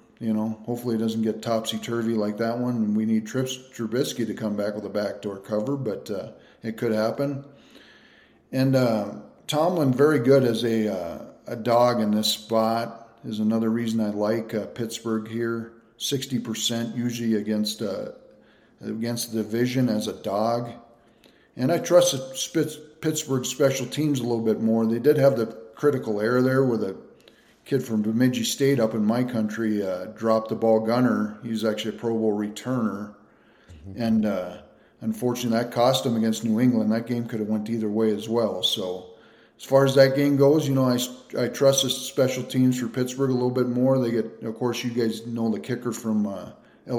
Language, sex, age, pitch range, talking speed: English, male, 40-59, 110-125 Hz, 190 wpm